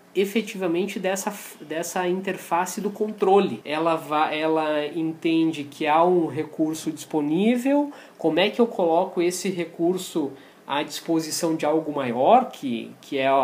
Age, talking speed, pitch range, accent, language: 20-39, 125 wpm, 155-210 Hz, Brazilian, Portuguese